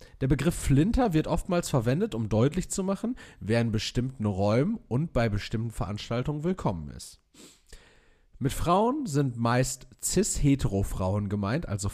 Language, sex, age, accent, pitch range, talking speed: German, male, 40-59, German, 100-135 Hz, 135 wpm